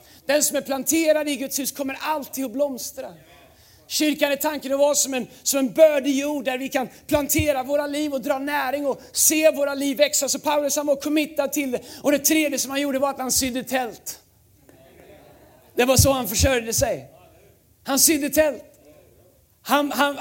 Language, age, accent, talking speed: Swedish, 30-49, native, 190 wpm